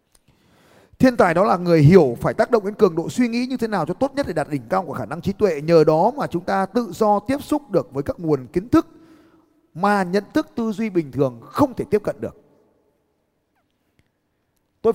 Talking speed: 230 wpm